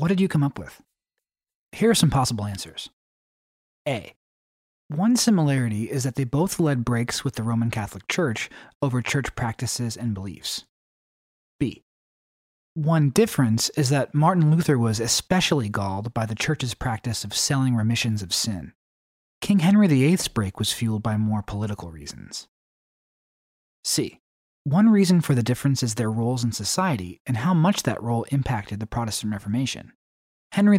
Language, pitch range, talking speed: English, 110-160 Hz, 155 wpm